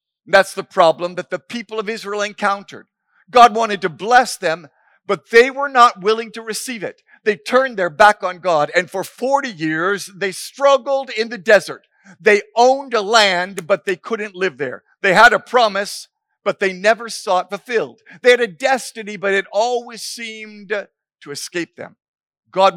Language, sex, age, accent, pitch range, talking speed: English, male, 50-69, American, 180-230 Hz, 180 wpm